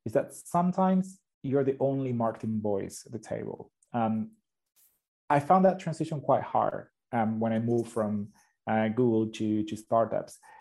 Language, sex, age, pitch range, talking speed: English, male, 30-49, 110-140 Hz, 160 wpm